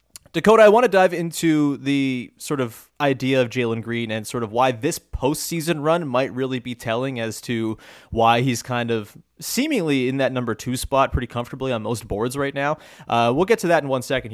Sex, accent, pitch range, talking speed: male, American, 120-175 Hz, 215 wpm